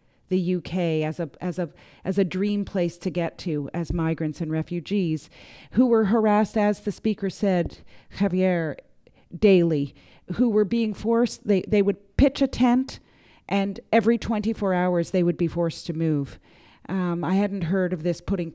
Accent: American